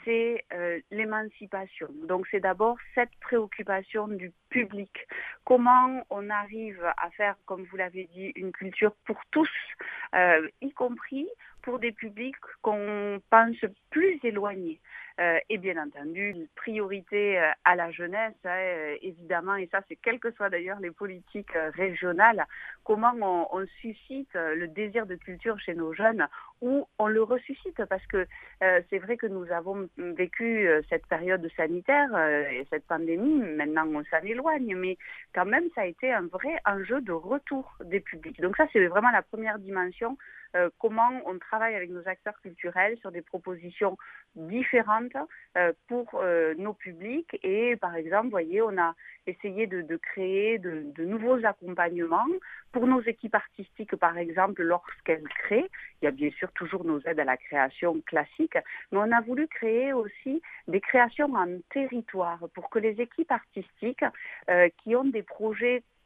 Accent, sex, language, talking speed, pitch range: French, female, French, 160 wpm, 180-235 Hz